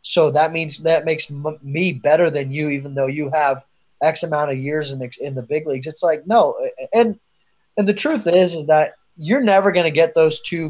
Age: 30-49